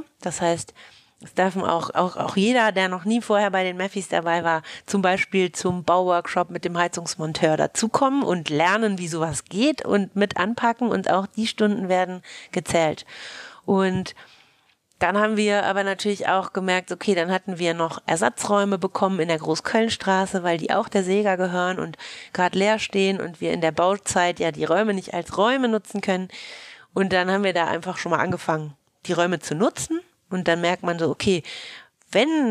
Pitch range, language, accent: 170-205 Hz, German, German